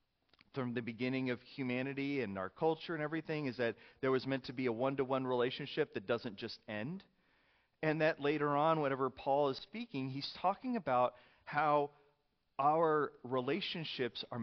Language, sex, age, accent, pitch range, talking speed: English, male, 30-49, American, 130-180 Hz, 160 wpm